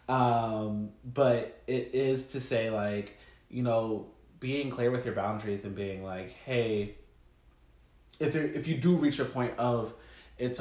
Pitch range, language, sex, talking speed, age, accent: 105-130 Hz, English, male, 155 wpm, 20-39, American